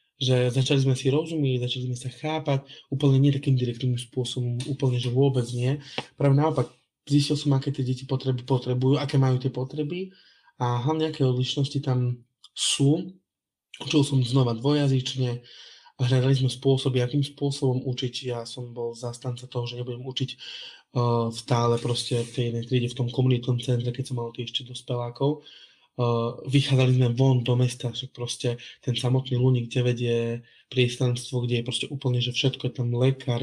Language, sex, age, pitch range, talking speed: Slovak, male, 20-39, 120-135 Hz, 165 wpm